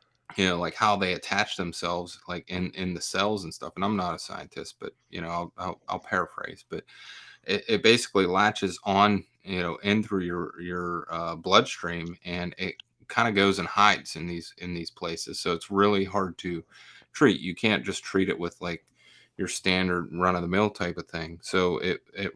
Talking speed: 205 wpm